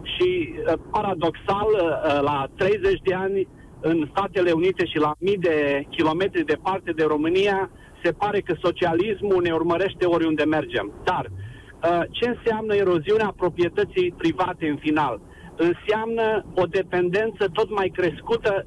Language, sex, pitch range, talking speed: Romanian, male, 165-205 Hz, 125 wpm